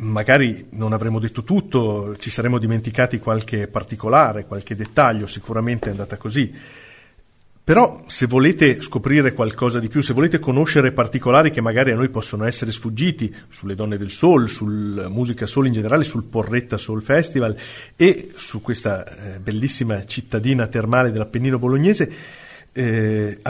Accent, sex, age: native, male, 40-59